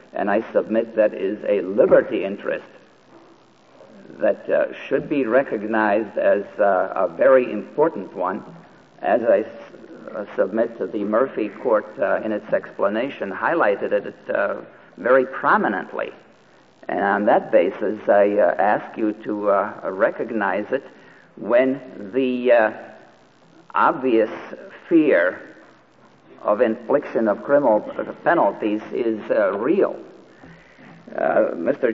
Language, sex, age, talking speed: English, male, 50-69, 120 wpm